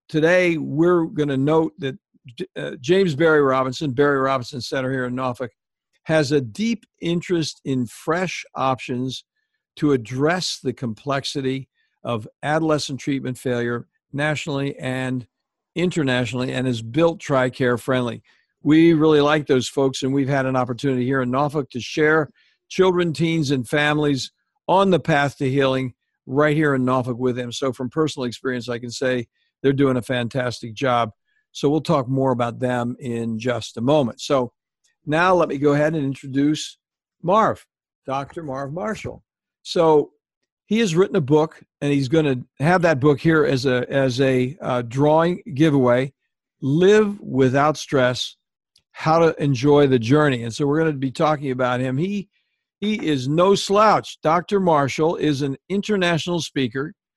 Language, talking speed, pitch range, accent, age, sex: English, 160 wpm, 130-160 Hz, American, 60-79, male